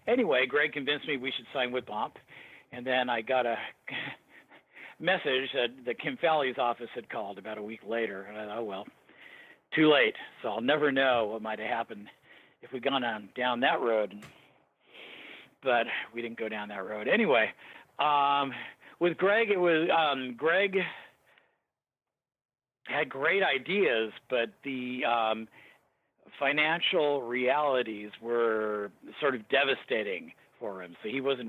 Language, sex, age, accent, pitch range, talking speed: English, male, 50-69, American, 110-140 Hz, 155 wpm